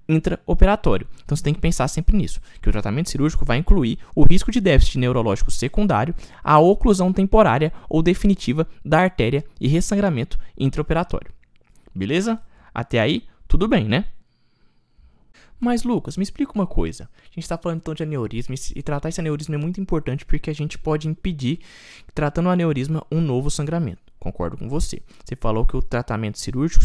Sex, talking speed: male, 170 wpm